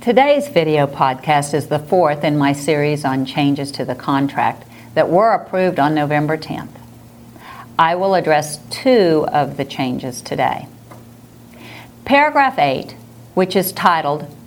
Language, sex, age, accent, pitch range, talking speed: English, female, 50-69, American, 140-195 Hz, 135 wpm